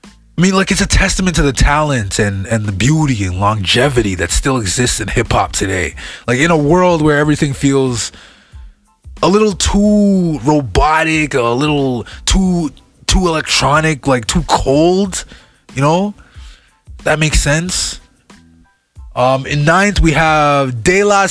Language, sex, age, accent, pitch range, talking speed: English, male, 20-39, American, 120-180 Hz, 145 wpm